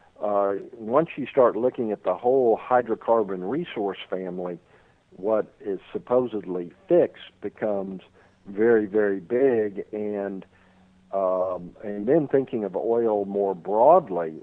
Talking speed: 115 wpm